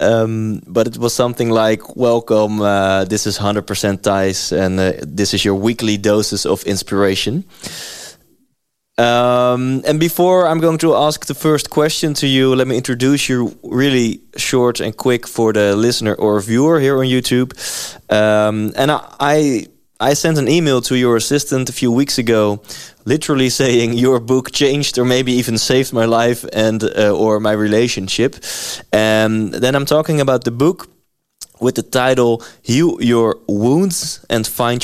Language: Dutch